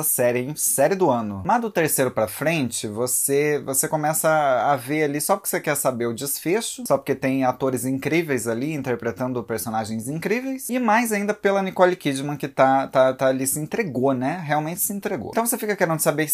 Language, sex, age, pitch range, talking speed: Portuguese, male, 20-39, 125-170 Hz, 200 wpm